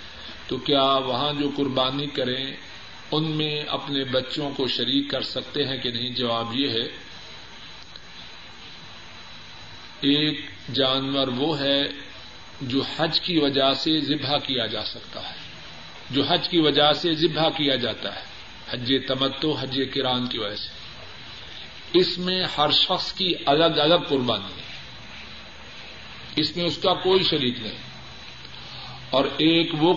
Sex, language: male, Urdu